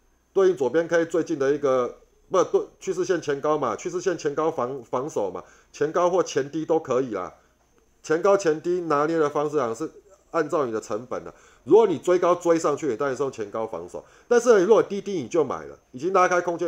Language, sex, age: Chinese, male, 30-49